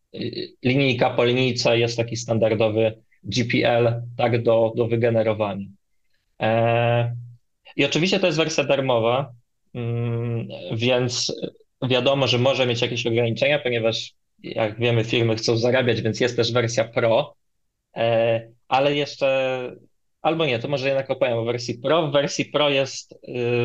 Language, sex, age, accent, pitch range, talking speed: Polish, male, 20-39, native, 120-135 Hz, 125 wpm